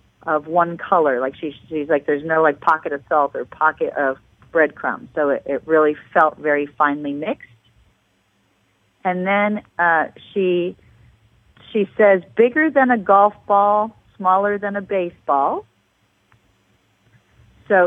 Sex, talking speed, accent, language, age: female, 140 wpm, American, English, 40-59